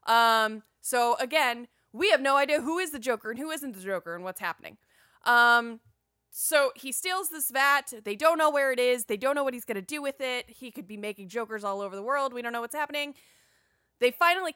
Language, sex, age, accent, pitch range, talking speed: English, female, 20-39, American, 215-305 Hz, 235 wpm